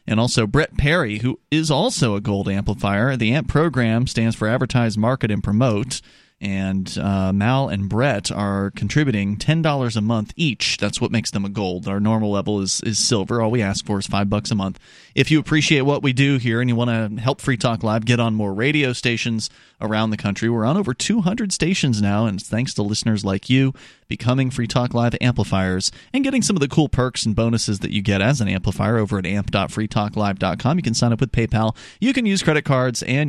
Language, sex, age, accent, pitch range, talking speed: English, male, 30-49, American, 105-135 Hz, 220 wpm